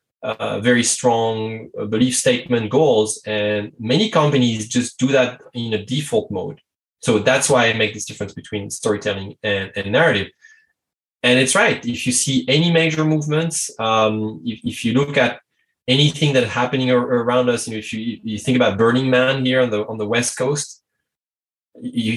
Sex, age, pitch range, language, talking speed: male, 20-39, 110-135 Hz, English, 180 wpm